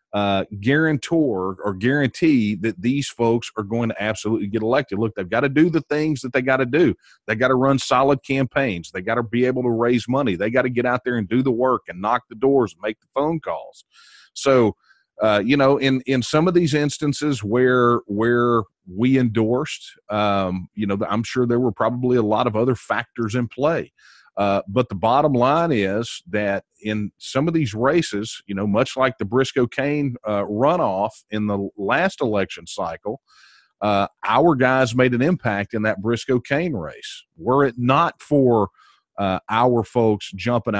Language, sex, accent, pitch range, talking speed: English, male, American, 105-135 Hz, 185 wpm